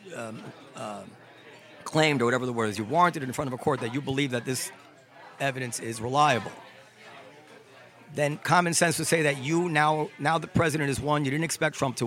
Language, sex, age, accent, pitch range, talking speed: English, male, 40-59, American, 140-190 Hz, 205 wpm